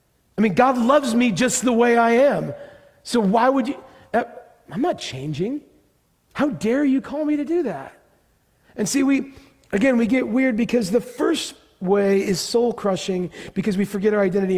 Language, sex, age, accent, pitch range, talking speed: English, male, 40-59, American, 185-260 Hz, 180 wpm